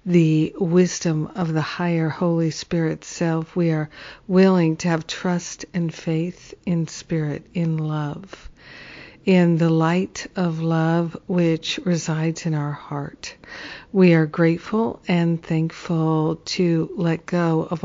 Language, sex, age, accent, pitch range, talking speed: English, female, 50-69, American, 160-180 Hz, 130 wpm